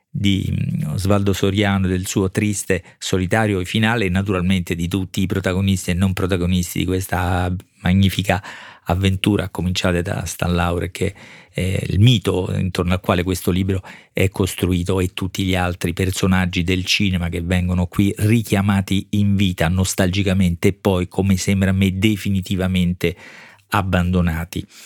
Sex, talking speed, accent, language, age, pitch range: male, 140 wpm, native, Italian, 40-59, 90-105 Hz